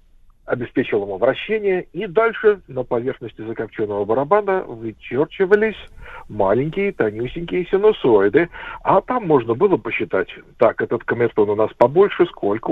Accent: native